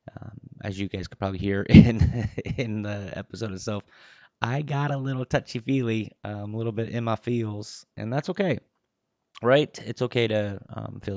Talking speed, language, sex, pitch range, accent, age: 185 wpm, English, male, 100-125 Hz, American, 20-39